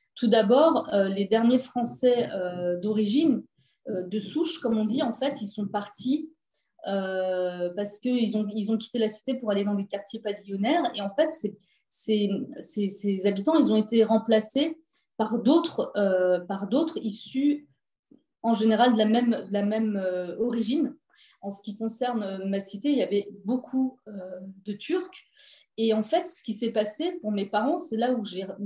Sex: female